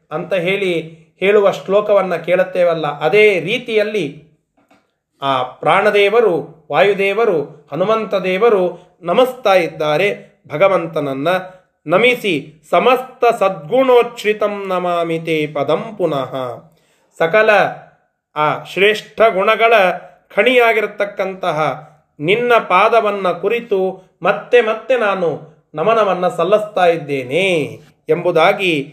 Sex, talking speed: male, 75 wpm